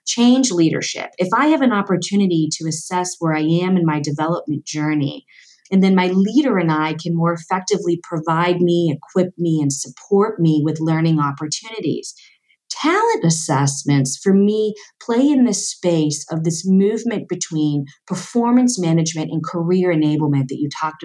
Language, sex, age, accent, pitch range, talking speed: English, female, 40-59, American, 155-200 Hz, 155 wpm